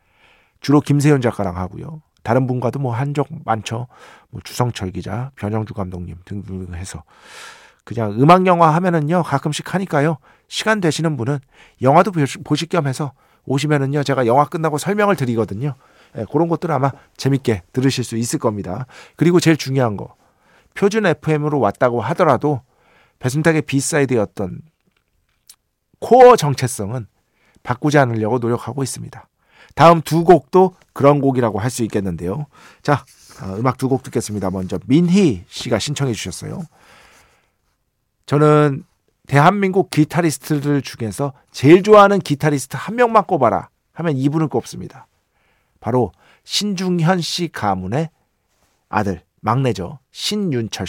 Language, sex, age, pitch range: Korean, male, 40-59, 115-165 Hz